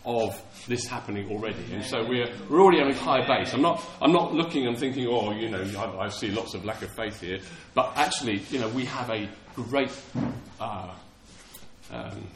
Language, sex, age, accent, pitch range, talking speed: English, male, 40-59, British, 100-160 Hz, 200 wpm